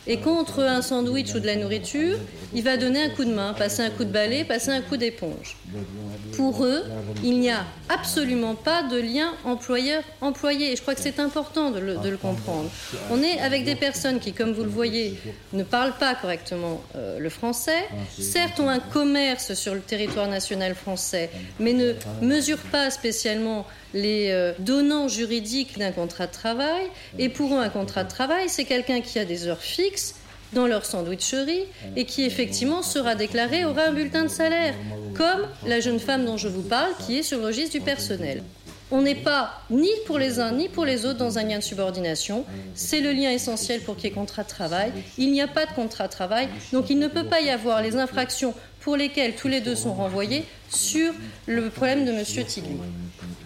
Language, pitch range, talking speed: French, 195-280 Hz, 200 wpm